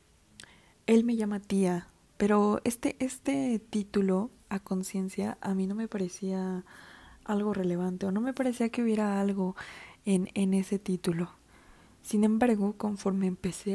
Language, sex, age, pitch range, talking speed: Spanish, female, 20-39, 185-215 Hz, 140 wpm